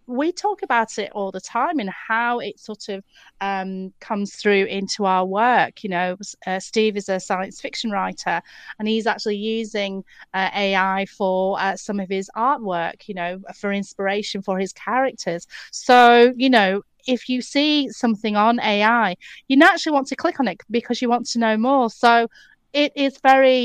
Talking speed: 185 wpm